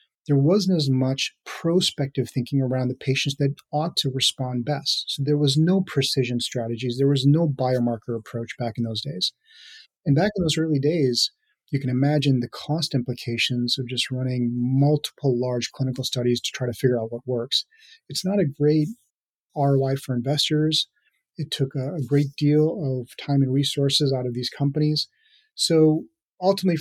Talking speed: 170 wpm